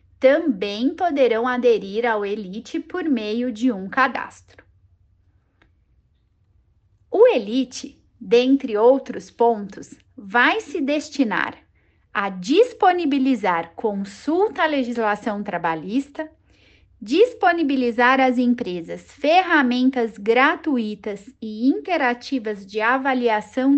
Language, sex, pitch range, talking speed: Portuguese, female, 215-285 Hz, 85 wpm